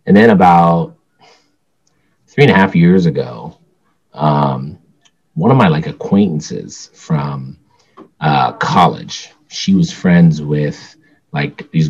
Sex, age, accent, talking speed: male, 30-49, American, 120 wpm